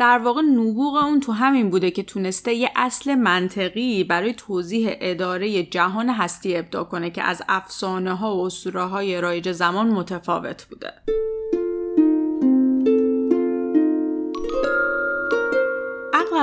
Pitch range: 185-250 Hz